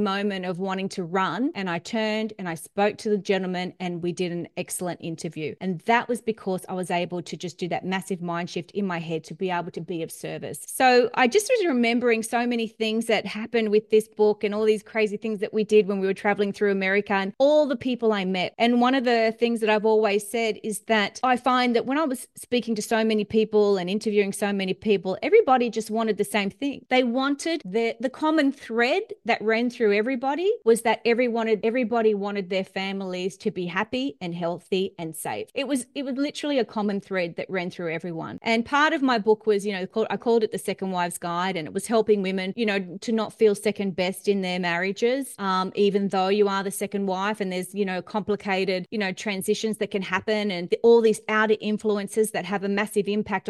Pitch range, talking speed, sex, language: 190-225 Hz, 230 wpm, female, English